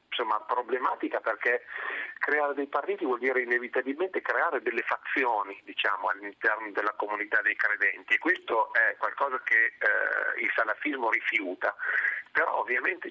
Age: 40-59